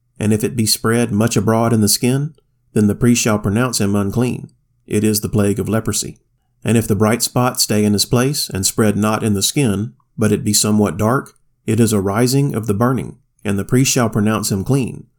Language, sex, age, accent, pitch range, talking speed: English, male, 40-59, American, 105-125 Hz, 225 wpm